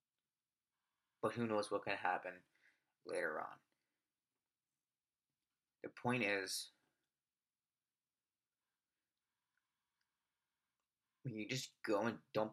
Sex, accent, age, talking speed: male, American, 30-49, 80 wpm